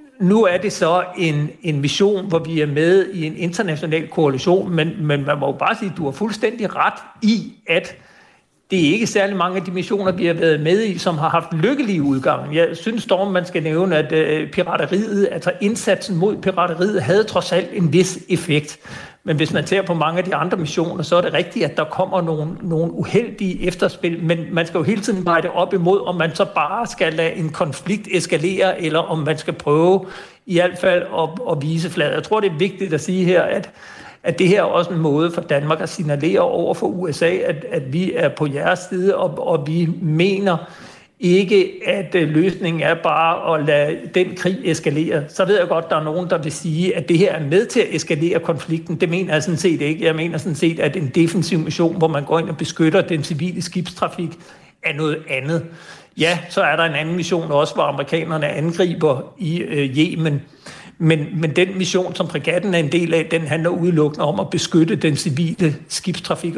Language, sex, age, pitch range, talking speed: Danish, male, 60-79, 160-185 Hz, 215 wpm